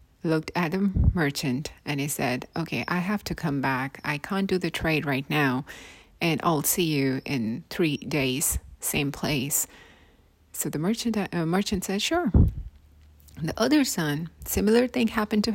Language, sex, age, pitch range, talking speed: English, female, 30-49, 140-195 Hz, 170 wpm